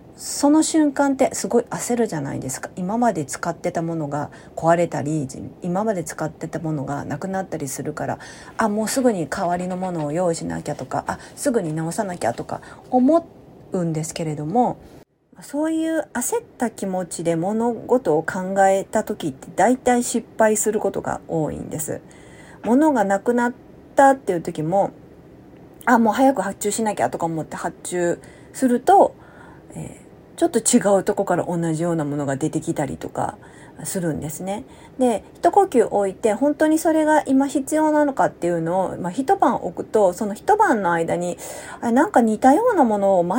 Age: 40-59